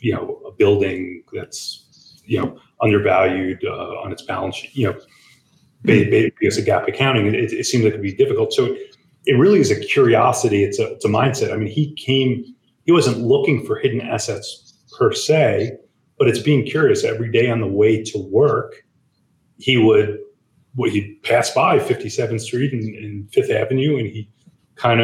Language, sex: English, male